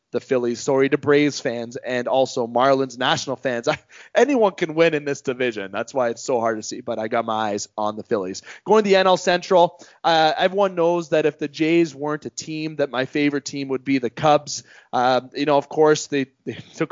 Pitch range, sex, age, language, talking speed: 125-155 Hz, male, 20-39, English, 225 wpm